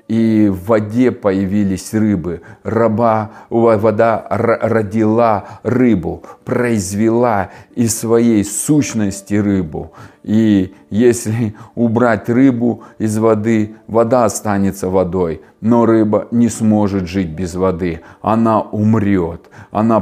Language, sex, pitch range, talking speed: Russian, male, 105-145 Hz, 100 wpm